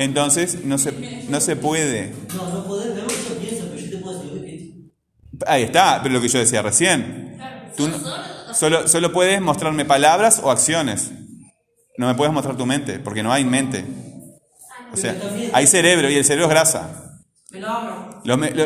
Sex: male